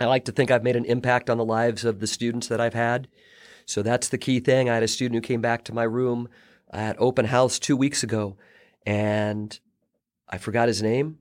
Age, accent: 40-59, American